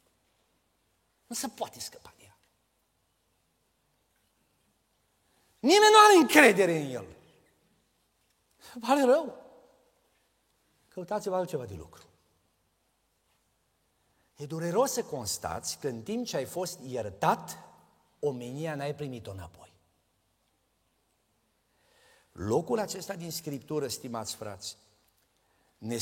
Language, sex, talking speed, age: Romanian, male, 90 wpm, 50-69